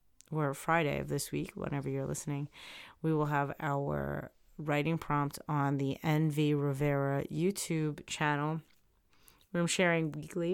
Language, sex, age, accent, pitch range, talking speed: English, female, 30-49, American, 140-165 Hz, 135 wpm